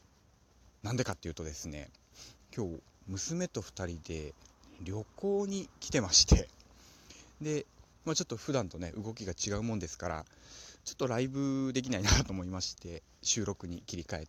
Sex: male